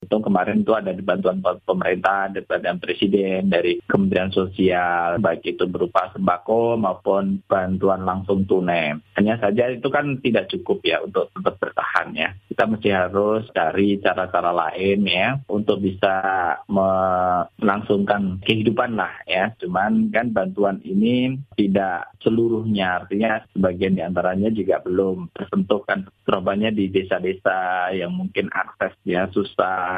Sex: male